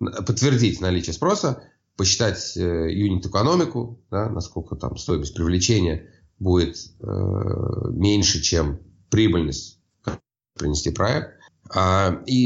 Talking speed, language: 95 wpm, Russian